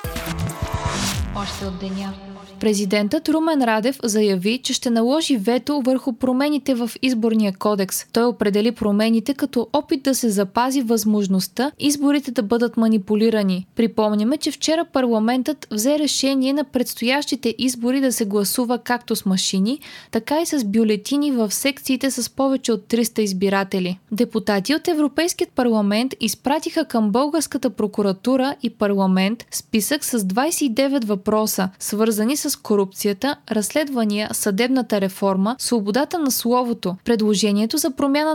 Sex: female